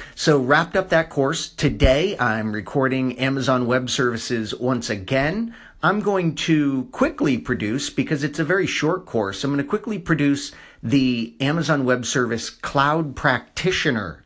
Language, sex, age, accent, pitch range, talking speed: English, male, 40-59, American, 120-150 Hz, 145 wpm